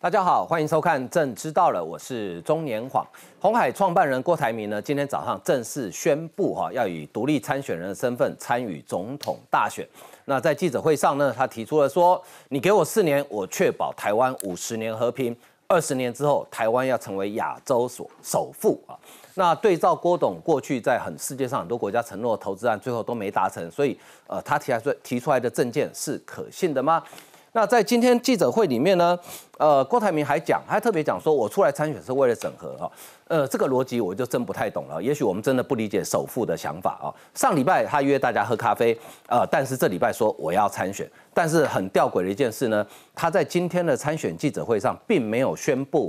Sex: male